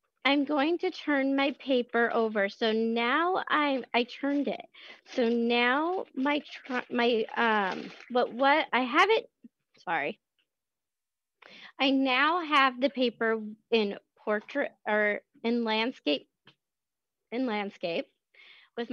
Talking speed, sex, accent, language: 115 wpm, female, American, English